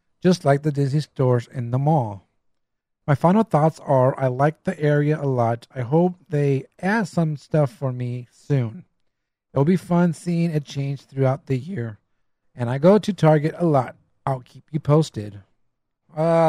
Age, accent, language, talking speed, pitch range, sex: 40-59, American, English, 175 wpm, 130-155 Hz, male